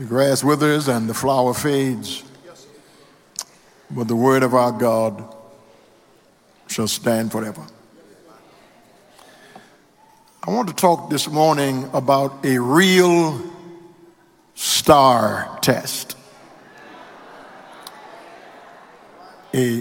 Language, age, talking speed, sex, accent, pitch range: English, 60-79, 85 wpm, male, American, 125-170 Hz